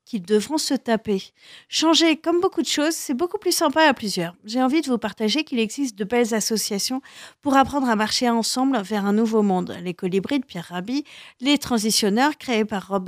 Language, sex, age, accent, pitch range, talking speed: French, female, 40-59, French, 220-295 Hz, 200 wpm